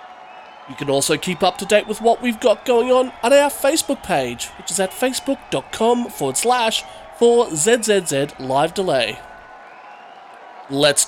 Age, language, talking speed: 30-49, English, 140 wpm